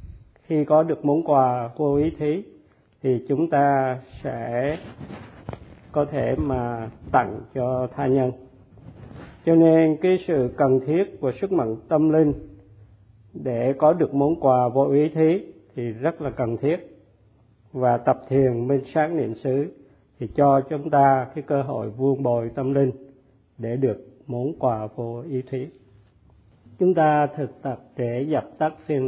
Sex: male